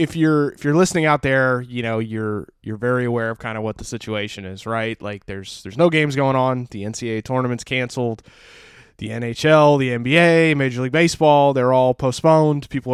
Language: English